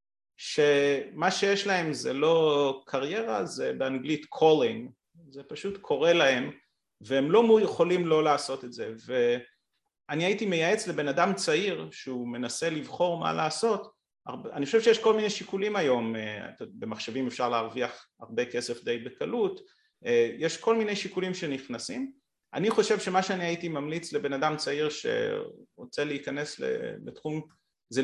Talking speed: 135 wpm